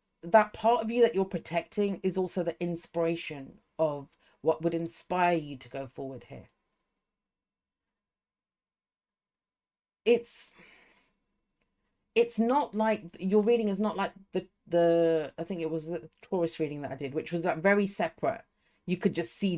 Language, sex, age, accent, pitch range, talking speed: English, female, 40-59, British, 160-210 Hz, 155 wpm